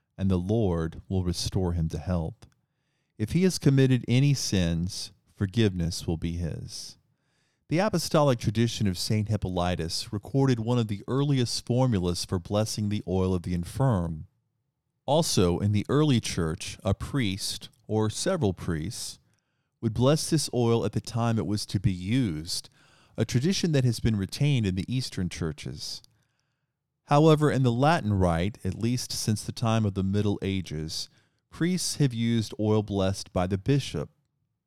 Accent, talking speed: American, 160 wpm